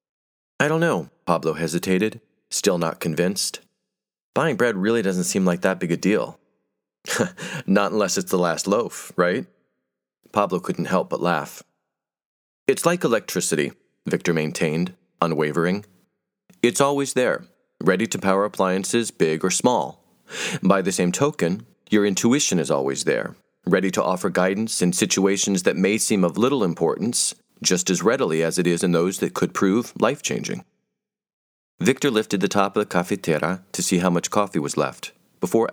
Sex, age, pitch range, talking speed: male, 40-59, 85-120 Hz, 160 wpm